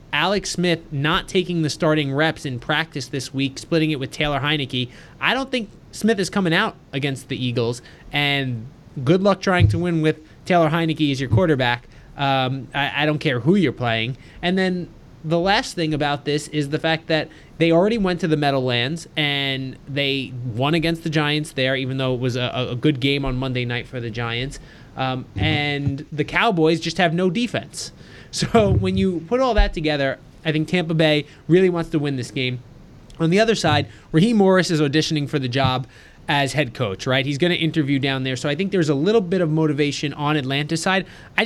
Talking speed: 205 wpm